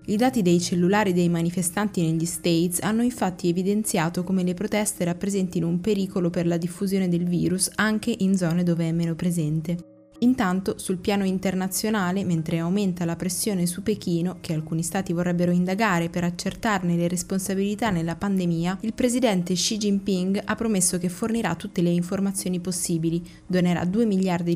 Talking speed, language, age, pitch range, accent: 160 wpm, Italian, 20-39, 170-205 Hz, native